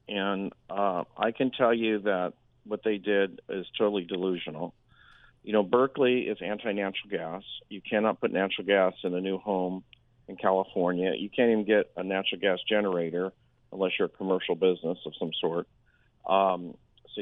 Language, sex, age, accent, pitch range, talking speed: English, male, 50-69, American, 95-110 Hz, 165 wpm